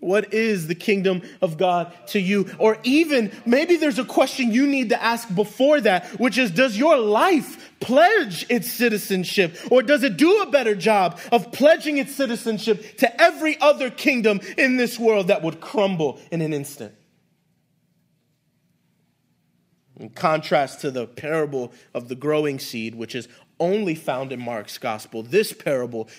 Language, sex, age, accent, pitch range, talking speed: English, male, 30-49, American, 155-225 Hz, 160 wpm